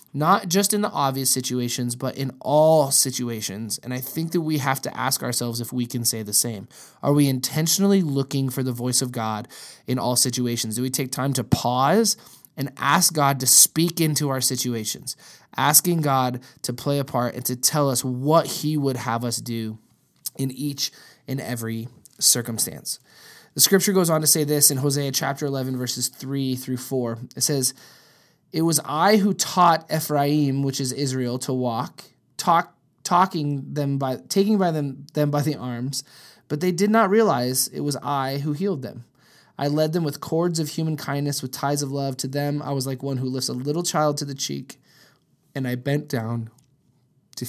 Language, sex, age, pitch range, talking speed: English, male, 20-39, 125-150 Hz, 190 wpm